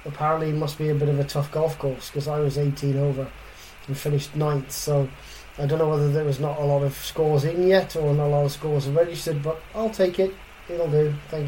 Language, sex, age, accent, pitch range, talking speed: English, male, 20-39, British, 145-160 Hz, 250 wpm